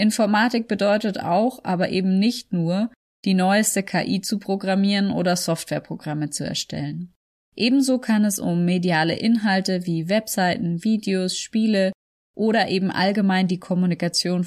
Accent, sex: German, female